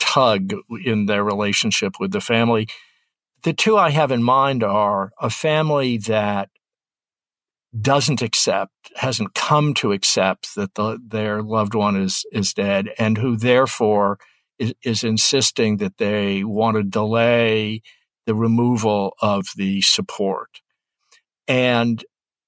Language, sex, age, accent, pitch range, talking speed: English, male, 60-79, American, 105-130 Hz, 130 wpm